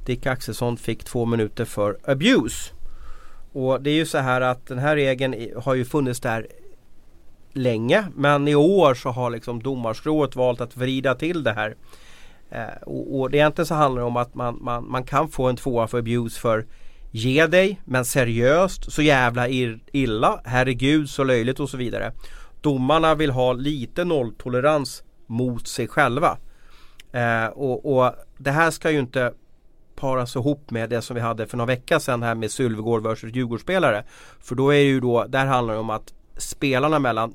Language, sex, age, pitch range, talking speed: Swedish, male, 30-49, 115-140 Hz, 185 wpm